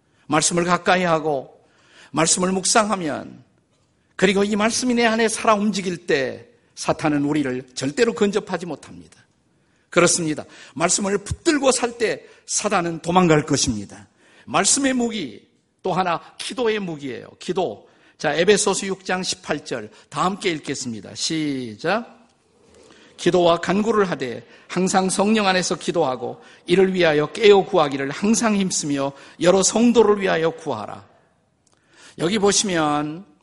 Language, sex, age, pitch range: Korean, male, 50-69, 145-205 Hz